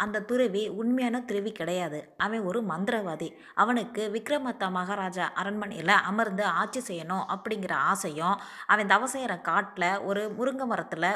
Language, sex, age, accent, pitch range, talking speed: Tamil, female, 20-39, native, 190-230 Hz, 125 wpm